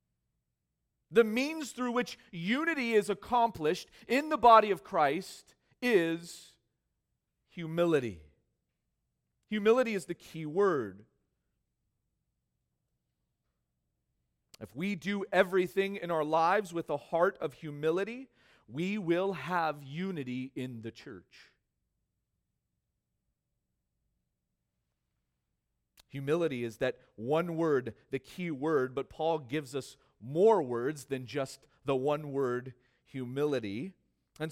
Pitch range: 130-200 Hz